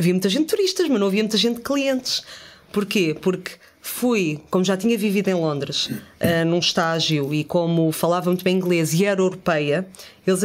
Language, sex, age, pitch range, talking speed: Portuguese, female, 20-39, 175-225 Hz, 190 wpm